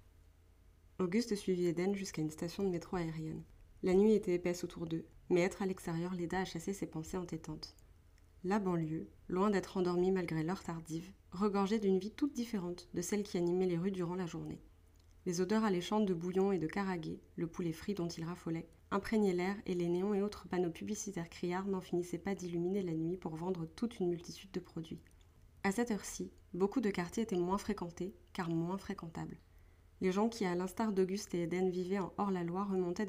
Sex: female